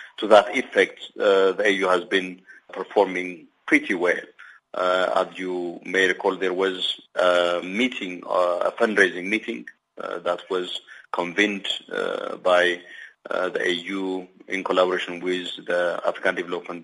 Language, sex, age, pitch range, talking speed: English, male, 30-49, 90-95 Hz, 145 wpm